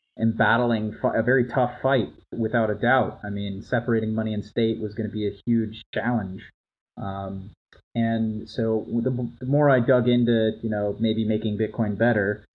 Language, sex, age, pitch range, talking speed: English, male, 30-49, 105-120 Hz, 170 wpm